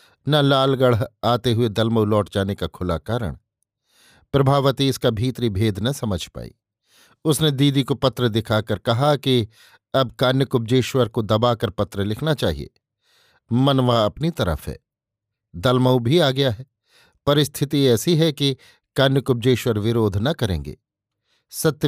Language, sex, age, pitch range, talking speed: Hindi, male, 50-69, 115-140 Hz, 135 wpm